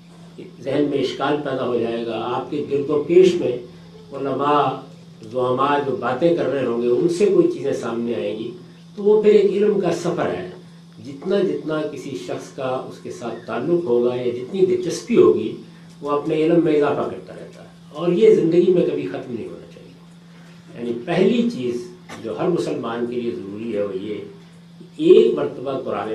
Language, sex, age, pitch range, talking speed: Urdu, male, 50-69, 135-180 Hz, 190 wpm